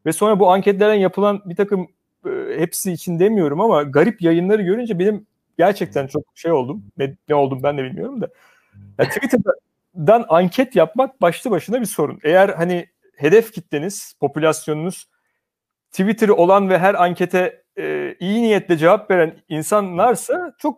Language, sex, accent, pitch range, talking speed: Turkish, male, native, 175-240 Hz, 145 wpm